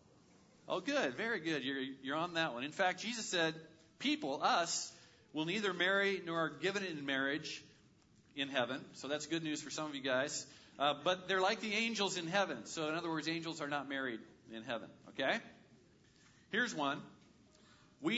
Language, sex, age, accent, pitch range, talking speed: English, male, 40-59, American, 150-190 Hz, 185 wpm